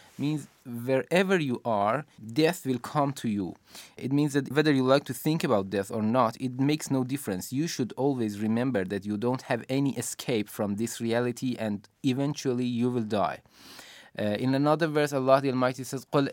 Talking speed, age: 185 wpm, 20-39